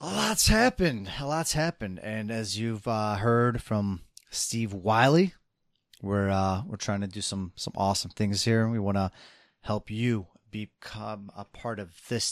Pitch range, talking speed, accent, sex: 95-115 Hz, 175 wpm, American, male